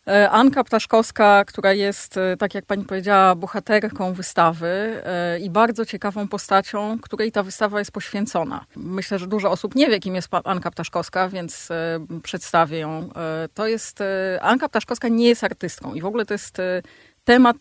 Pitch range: 185-225 Hz